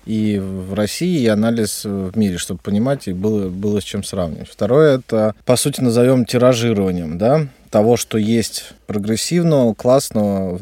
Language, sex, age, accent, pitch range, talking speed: Russian, male, 20-39, native, 100-120 Hz, 155 wpm